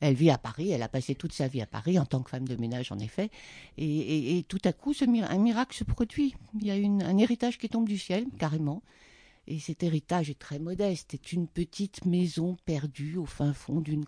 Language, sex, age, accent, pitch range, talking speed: French, female, 60-79, French, 155-215 Hz, 245 wpm